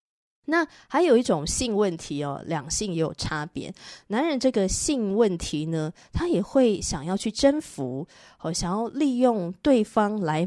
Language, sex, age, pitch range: Chinese, female, 20-39, 165-235 Hz